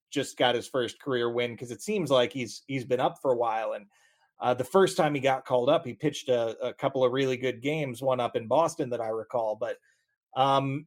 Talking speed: 245 wpm